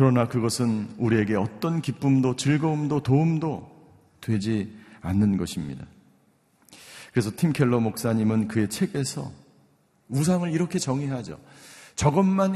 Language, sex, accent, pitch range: Korean, male, native, 130-185 Hz